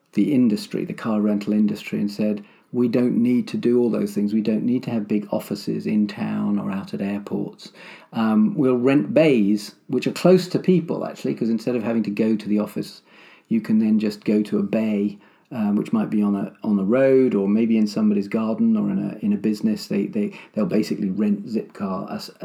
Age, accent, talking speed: 40-59, British, 220 wpm